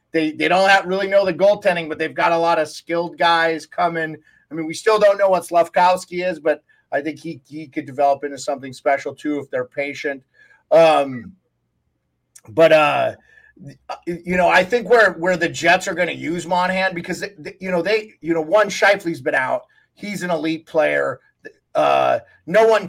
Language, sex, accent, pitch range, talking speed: English, male, American, 155-195 Hz, 195 wpm